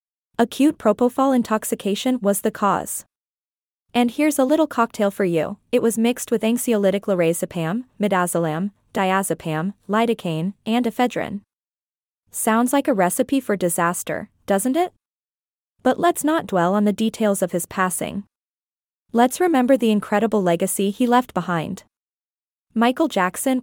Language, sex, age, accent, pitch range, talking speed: English, female, 20-39, American, 195-250 Hz, 130 wpm